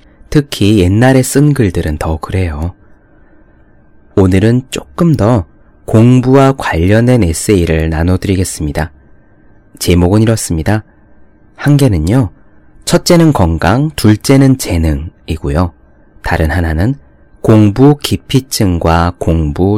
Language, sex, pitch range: Korean, male, 85-120 Hz